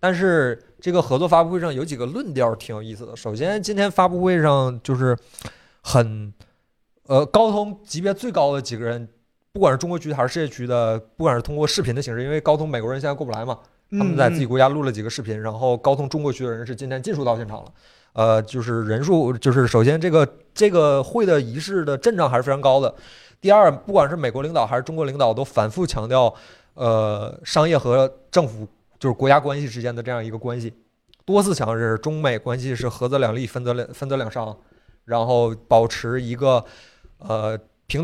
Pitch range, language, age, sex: 115-150 Hz, Chinese, 20-39, male